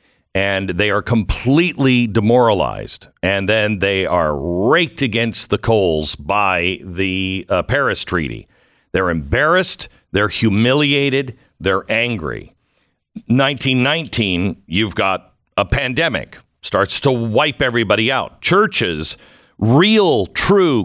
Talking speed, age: 105 wpm, 50-69